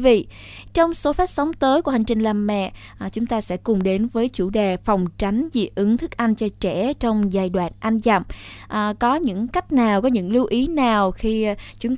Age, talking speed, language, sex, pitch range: 20-39, 225 wpm, Vietnamese, female, 200-260 Hz